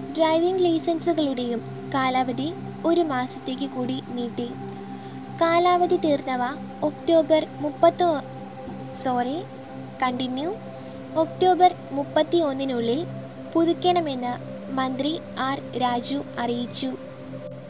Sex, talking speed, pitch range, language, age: female, 70 wpm, 260-335 Hz, Malayalam, 20-39